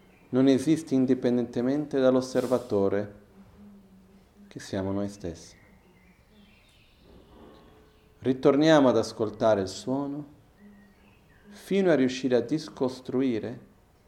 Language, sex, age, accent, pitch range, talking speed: Italian, male, 40-59, native, 95-130 Hz, 75 wpm